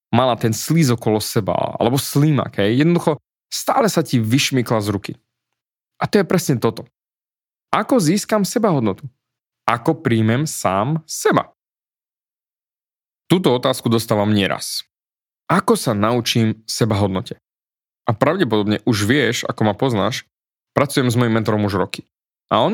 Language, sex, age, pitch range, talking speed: Slovak, male, 30-49, 110-145 Hz, 130 wpm